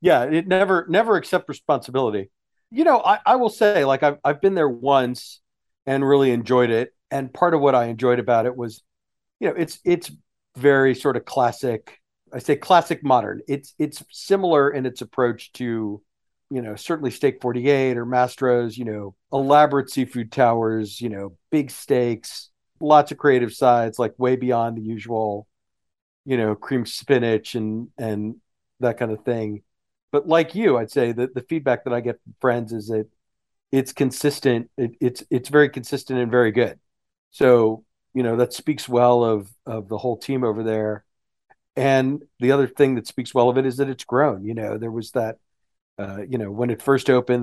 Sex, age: male, 40-59